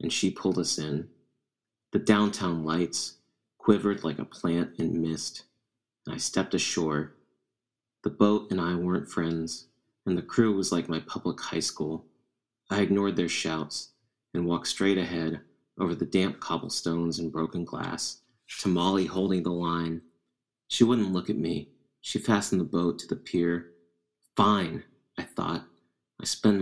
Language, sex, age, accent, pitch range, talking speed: English, male, 30-49, American, 80-90 Hz, 160 wpm